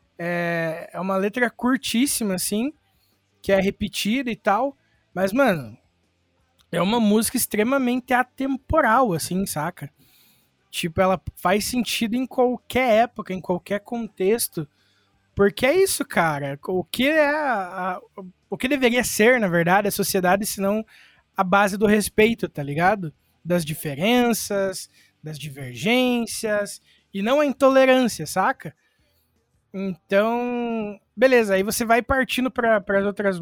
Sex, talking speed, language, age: male, 130 wpm, Portuguese, 20-39